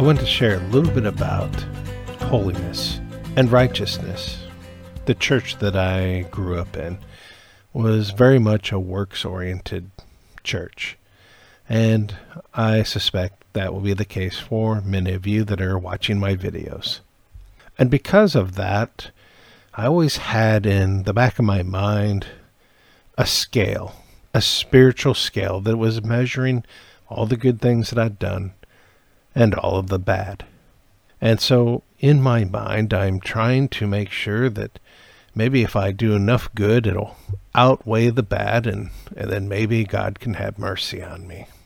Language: English